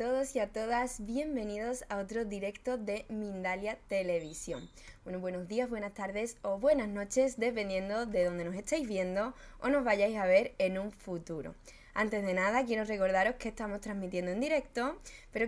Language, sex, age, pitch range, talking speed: Spanish, female, 20-39, 190-250 Hz, 170 wpm